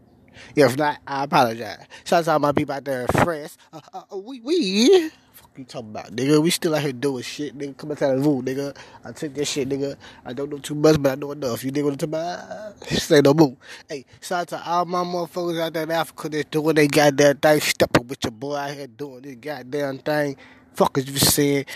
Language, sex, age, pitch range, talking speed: English, male, 20-39, 130-155 Hz, 250 wpm